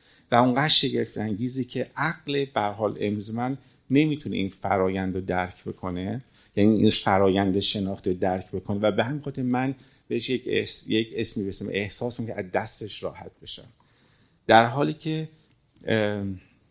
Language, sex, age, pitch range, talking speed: Persian, male, 50-69, 100-130 Hz, 145 wpm